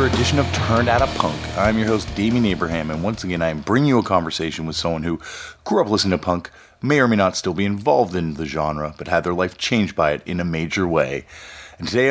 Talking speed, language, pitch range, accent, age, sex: 255 wpm, English, 90-115 Hz, American, 30-49, male